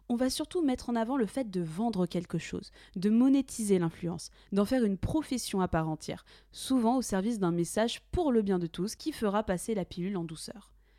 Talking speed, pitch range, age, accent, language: 215 wpm, 195-290 Hz, 20-39, French, French